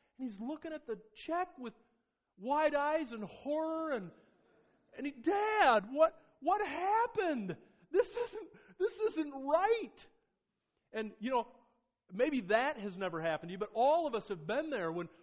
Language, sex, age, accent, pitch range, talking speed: English, male, 40-59, American, 180-265 Hz, 160 wpm